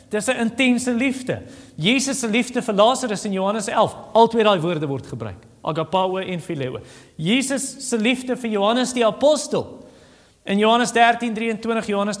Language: English